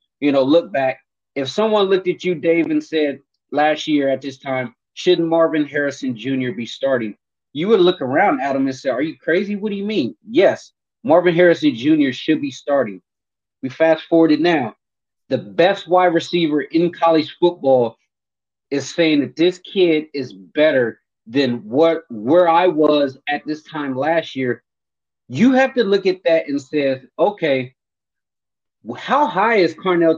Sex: male